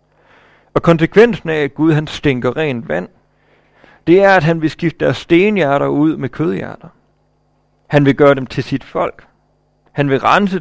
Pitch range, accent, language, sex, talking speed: 125-160 Hz, native, Danish, male, 170 wpm